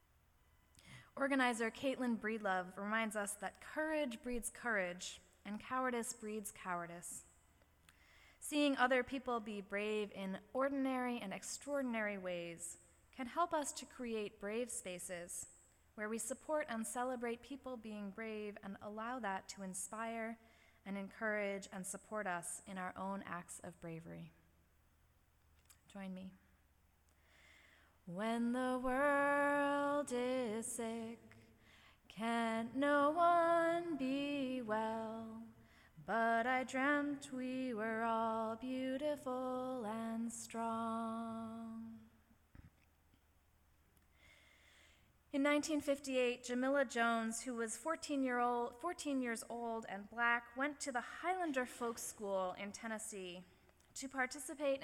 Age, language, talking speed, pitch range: 20-39, English, 105 wpm, 190-255 Hz